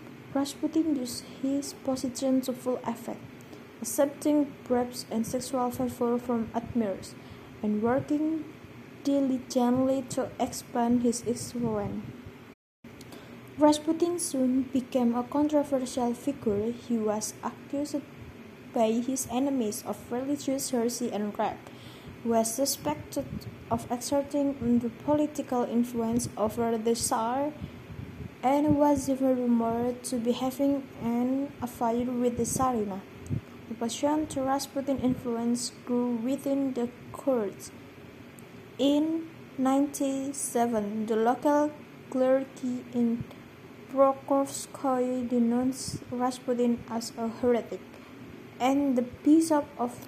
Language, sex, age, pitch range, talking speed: Indonesian, female, 20-39, 230-275 Hz, 100 wpm